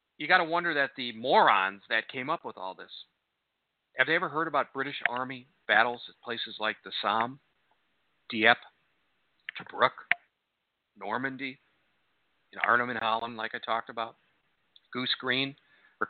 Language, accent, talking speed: English, American, 155 wpm